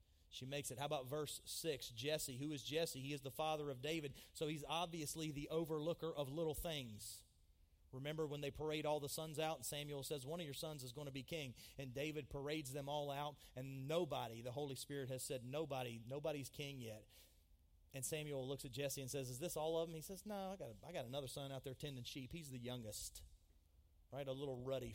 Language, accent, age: English, American, 30-49